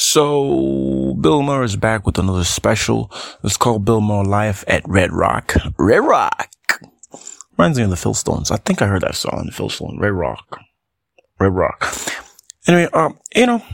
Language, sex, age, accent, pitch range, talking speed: English, male, 20-39, American, 105-120 Hz, 170 wpm